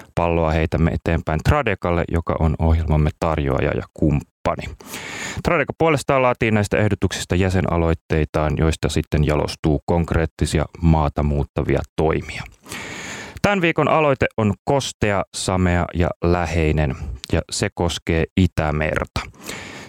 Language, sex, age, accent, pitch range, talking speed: Finnish, male, 30-49, native, 85-110 Hz, 105 wpm